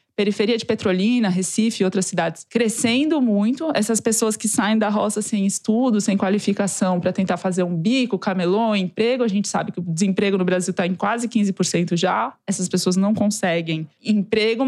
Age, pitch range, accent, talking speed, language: 20-39, 185-230 Hz, Brazilian, 180 wpm, Portuguese